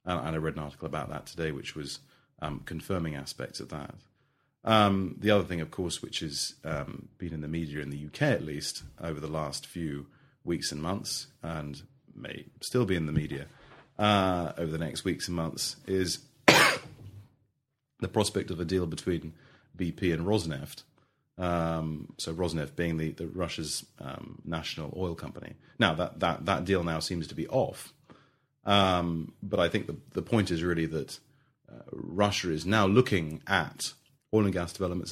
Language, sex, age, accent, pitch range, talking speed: English, male, 30-49, British, 80-100 Hz, 180 wpm